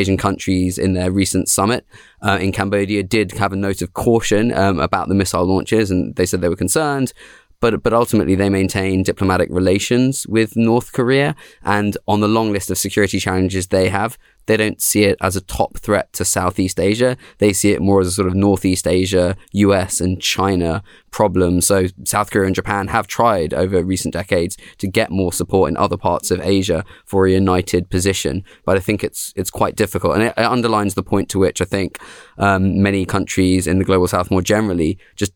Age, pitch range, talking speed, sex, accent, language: 20-39, 95-105 Hz, 205 wpm, male, British, English